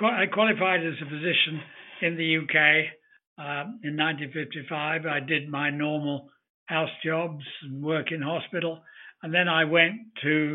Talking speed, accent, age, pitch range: 150 wpm, British, 60-79, 145-165 Hz